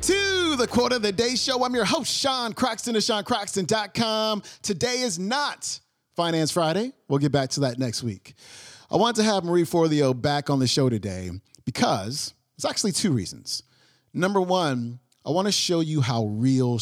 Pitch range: 125-165 Hz